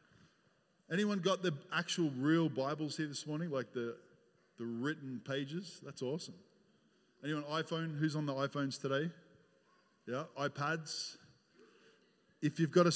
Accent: Australian